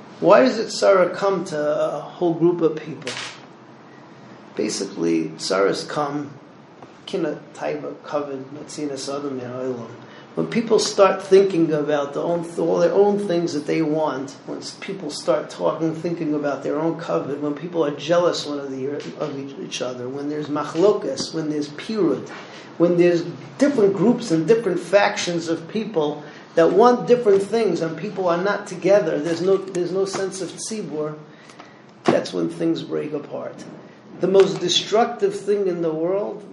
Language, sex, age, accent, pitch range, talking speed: English, male, 40-59, American, 150-195 Hz, 145 wpm